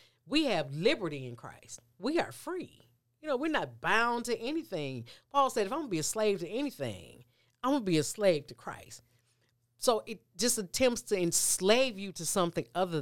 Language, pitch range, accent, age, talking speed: English, 130-205 Hz, American, 40-59, 205 wpm